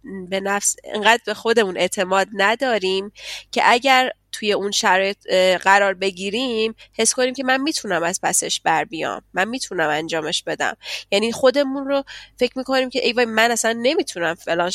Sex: female